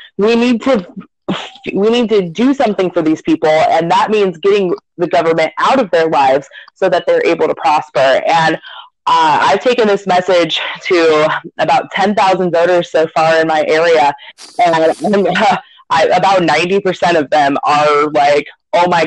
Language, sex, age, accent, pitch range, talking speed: English, female, 20-39, American, 165-235 Hz, 165 wpm